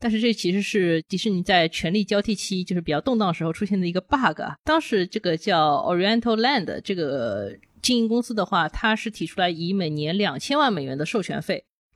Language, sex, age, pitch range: Chinese, female, 20-39, 165-230 Hz